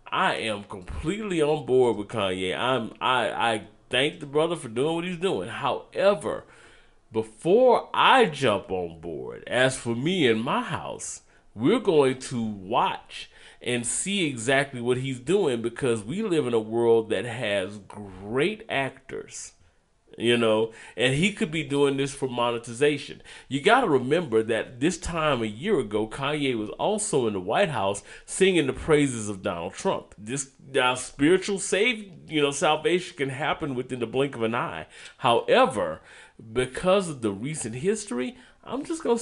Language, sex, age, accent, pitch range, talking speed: English, male, 30-49, American, 115-160 Hz, 165 wpm